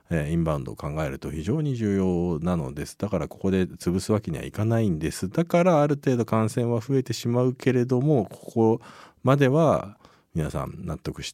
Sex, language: male, Japanese